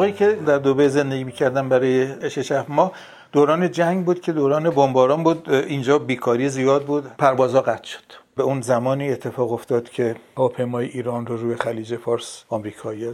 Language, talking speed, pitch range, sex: Persian, 170 wpm, 125-155 Hz, male